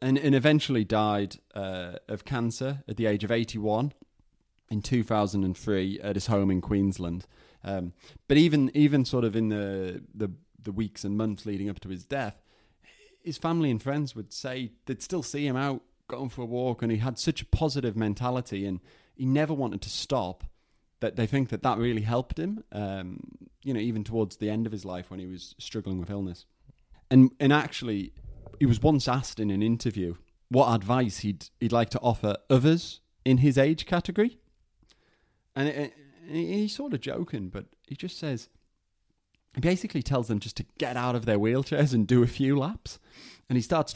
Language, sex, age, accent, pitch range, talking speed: English, male, 30-49, British, 105-140 Hz, 190 wpm